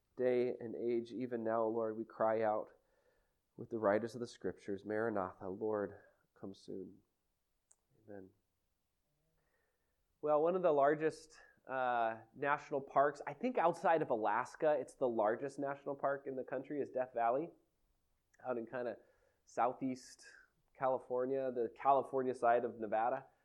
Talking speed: 140 wpm